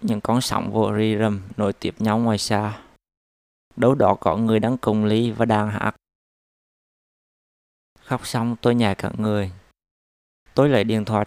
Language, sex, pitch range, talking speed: Vietnamese, male, 100-120 Hz, 165 wpm